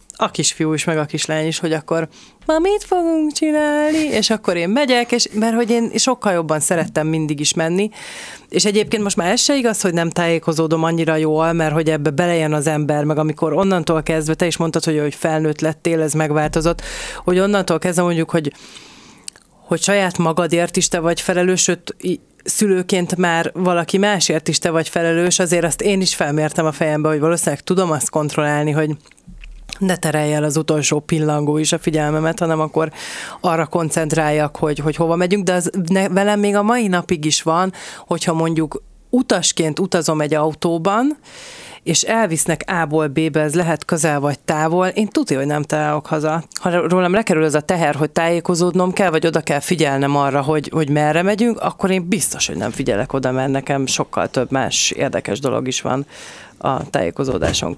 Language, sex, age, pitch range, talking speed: Hungarian, female, 30-49, 155-185 Hz, 180 wpm